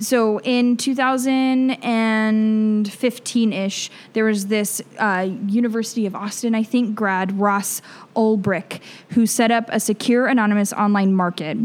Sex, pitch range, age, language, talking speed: female, 190-225 Hz, 20-39, English, 120 wpm